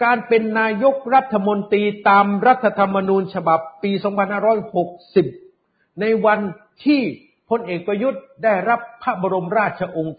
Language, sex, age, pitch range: Thai, male, 50-69, 195-255 Hz